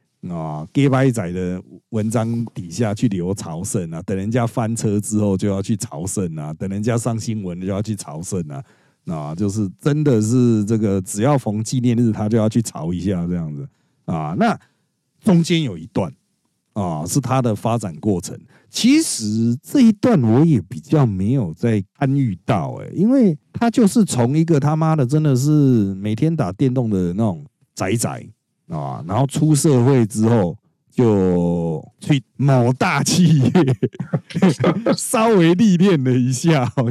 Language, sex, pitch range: Chinese, male, 105-155 Hz